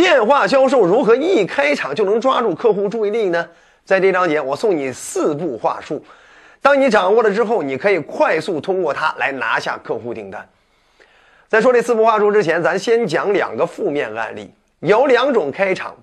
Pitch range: 200-280 Hz